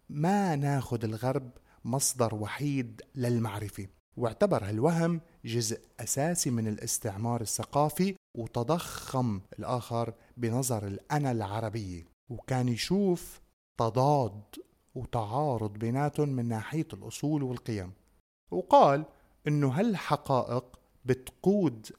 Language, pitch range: Arabic, 115-150 Hz